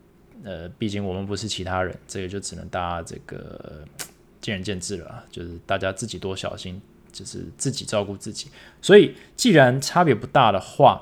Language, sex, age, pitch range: Chinese, male, 20-39, 100-130 Hz